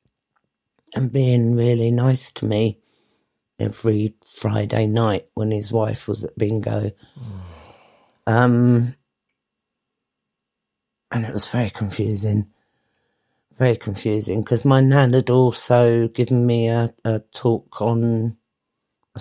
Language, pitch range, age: English, 115-140 Hz, 40-59